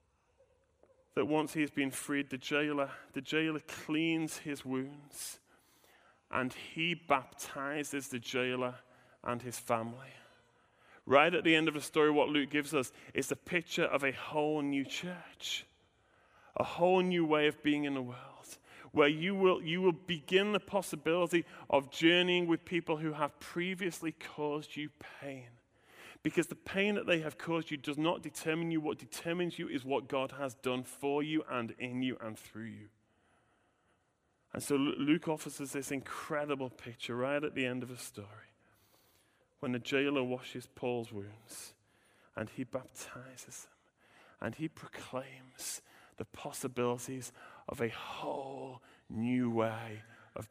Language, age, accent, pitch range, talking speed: English, 30-49, British, 125-165 Hz, 155 wpm